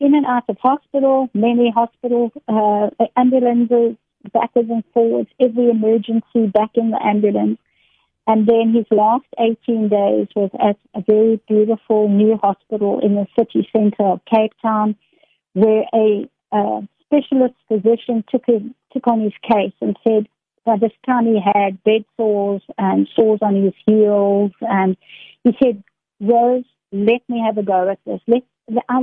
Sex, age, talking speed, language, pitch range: female, 50-69, 160 wpm, English, 205-235 Hz